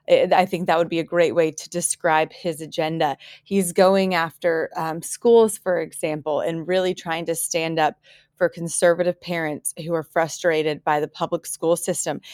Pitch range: 165-185 Hz